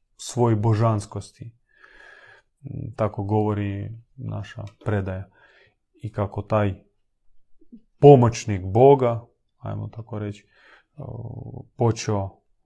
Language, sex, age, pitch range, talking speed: Croatian, male, 30-49, 105-125 Hz, 70 wpm